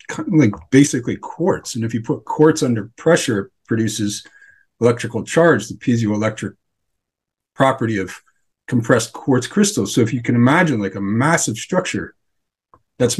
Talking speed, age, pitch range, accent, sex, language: 135 wpm, 40-59, 110-140 Hz, American, male, English